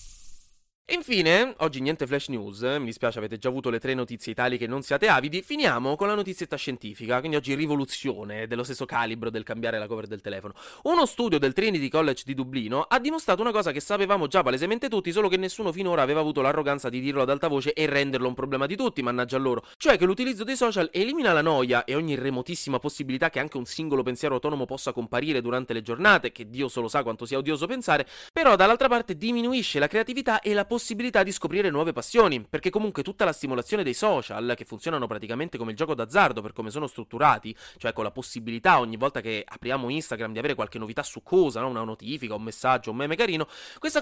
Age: 30-49